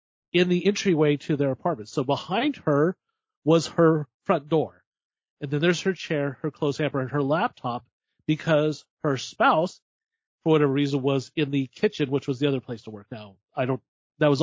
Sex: male